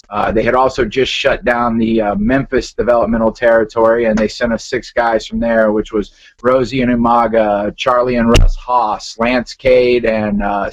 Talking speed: 185 wpm